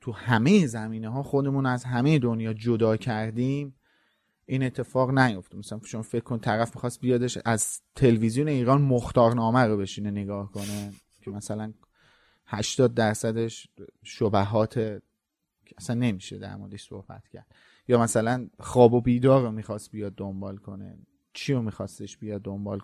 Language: Persian